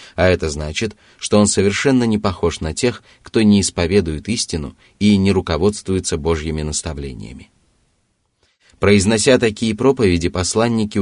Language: Russian